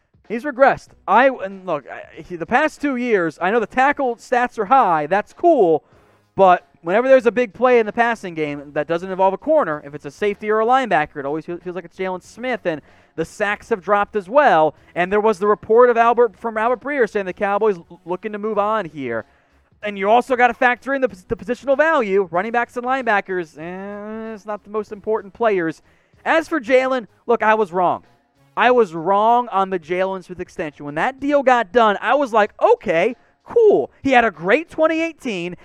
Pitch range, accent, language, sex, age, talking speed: 175-235 Hz, American, English, male, 30-49, 215 wpm